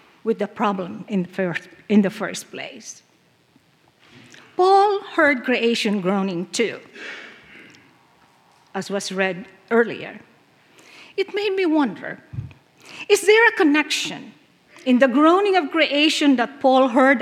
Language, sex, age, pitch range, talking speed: English, female, 50-69, 215-330 Hz, 115 wpm